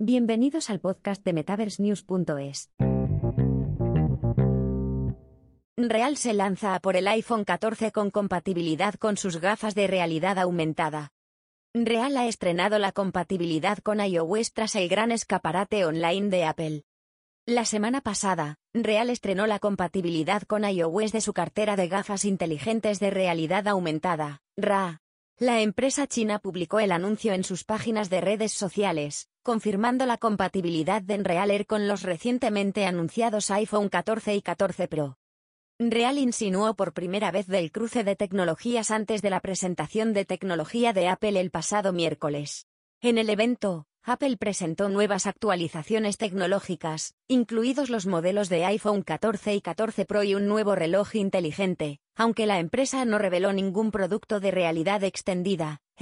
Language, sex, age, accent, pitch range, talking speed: Spanish, female, 20-39, Spanish, 175-215 Hz, 140 wpm